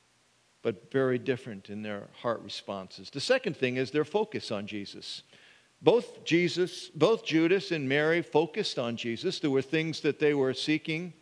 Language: English